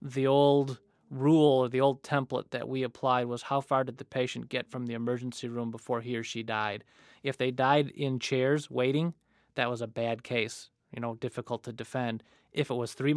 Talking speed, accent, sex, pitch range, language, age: 210 wpm, American, male, 125-150 Hz, English, 30-49